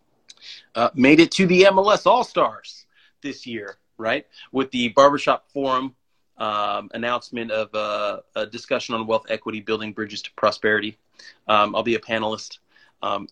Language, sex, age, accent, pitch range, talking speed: English, male, 30-49, American, 105-120 Hz, 150 wpm